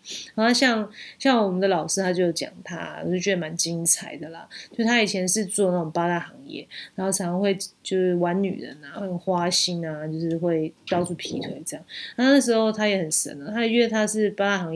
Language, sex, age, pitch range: Chinese, female, 20-39, 185-230 Hz